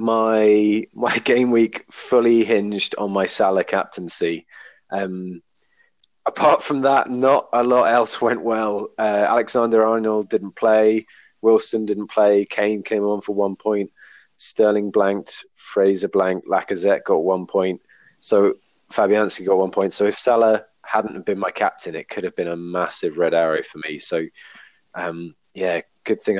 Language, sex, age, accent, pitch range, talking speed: English, male, 20-39, British, 90-110 Hz, 155 wpm